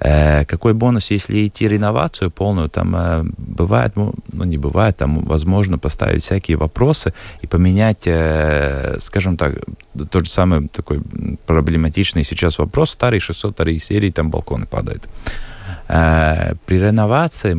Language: Russian